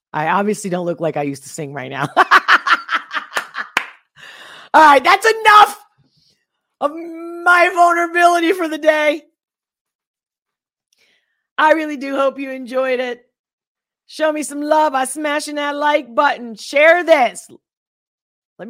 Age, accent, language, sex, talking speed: 40-59, American, English, female, 130 wpm